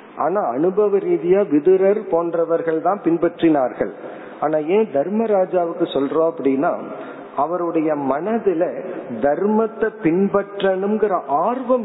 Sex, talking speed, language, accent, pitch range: male, 85 wpm, Tamil, native, 150-205 Hz